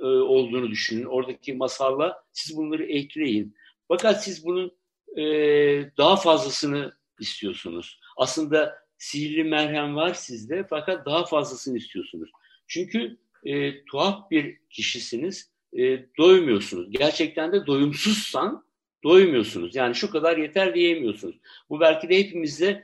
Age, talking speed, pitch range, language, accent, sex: 60-79, 115 wpm, 150-195 Hz, Turkish, native, male